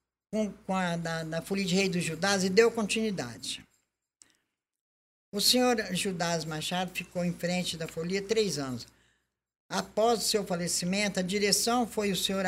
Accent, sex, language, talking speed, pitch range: Brazilian, male, Portuguese, 155 wpm, 170-220 Hz